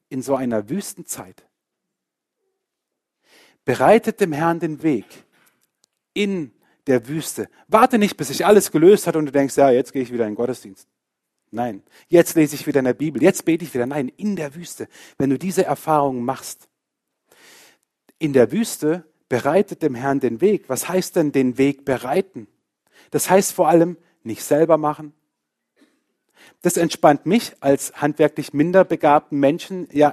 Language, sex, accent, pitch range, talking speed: German, male, German, 140-180 Hz, 160 wpm